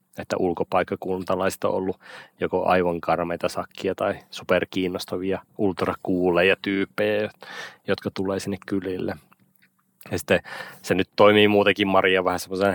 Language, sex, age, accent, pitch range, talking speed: Finnish, male, 30-49, native, 85-95 Hz, 110 wpm